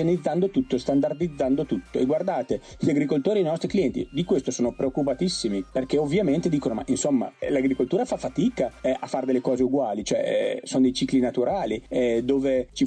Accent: native